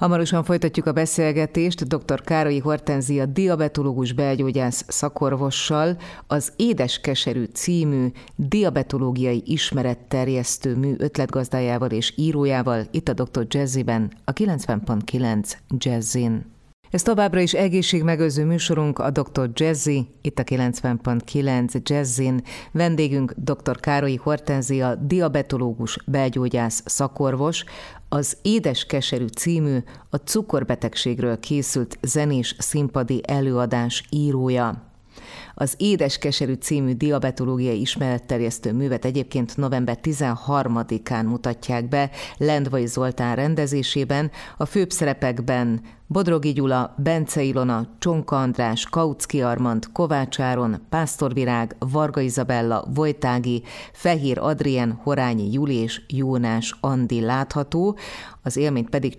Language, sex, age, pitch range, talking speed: Hungarian, female, 30-49, 125-150 Hz, 100 wpm